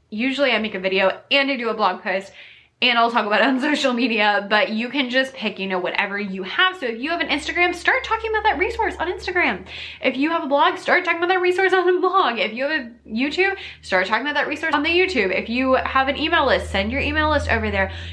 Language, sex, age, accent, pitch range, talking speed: English, female, 20-39, American, 195-280 Hz, 265 wpm